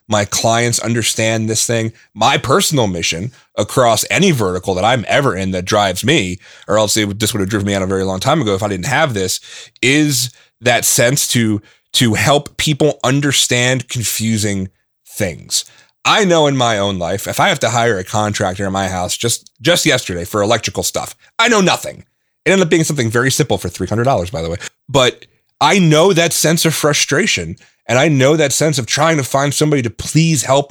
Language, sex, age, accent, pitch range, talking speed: English, male, 30-49, American, 105-140 Hz, 205 wpm